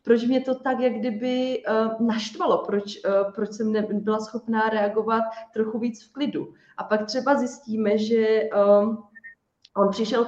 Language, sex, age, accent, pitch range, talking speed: Czech, female, 30-49, native, 200-225 Hz, 140 wpm